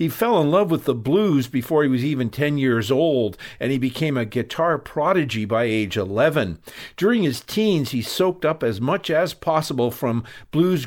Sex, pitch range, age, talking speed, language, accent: male, 120-155 Hz, 50-69, 195 wpm, English, American